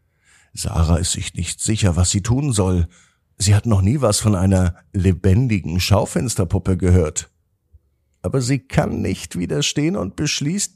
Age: 50-69